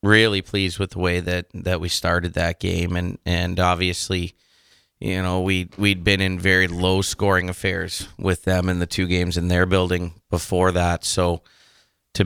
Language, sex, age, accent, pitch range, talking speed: English, male, 30-49, American, 85-95 Hz, 180 wpm